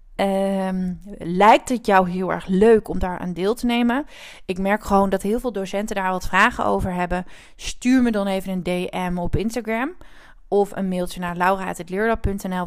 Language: Dutch